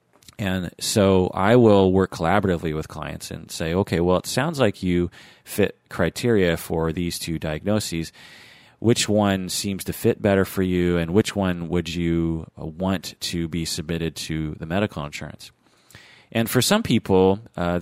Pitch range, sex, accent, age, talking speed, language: 80-100 Hz, male, American, 30-49, 160 wpm, English